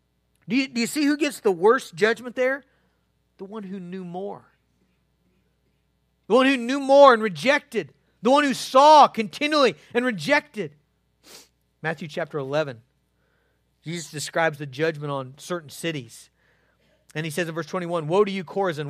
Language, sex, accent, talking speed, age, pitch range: English, male, American, 155 wpm, 40-59, 155-260 Hz